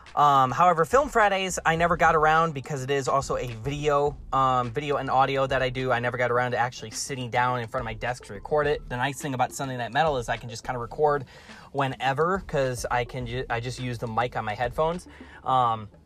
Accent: American